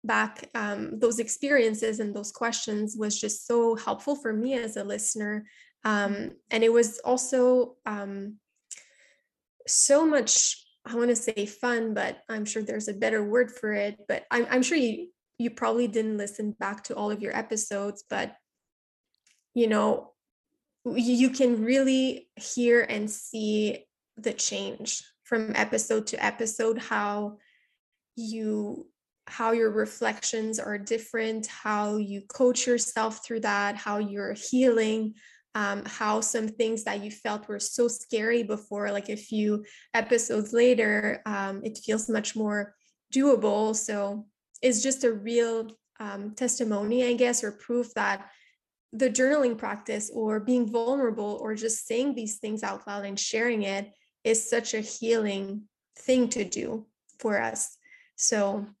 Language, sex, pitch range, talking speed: English, female, 210-240 Hz, 150 wpm